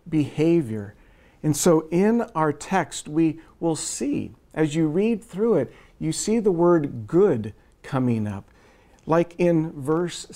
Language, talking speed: English, 140 wpm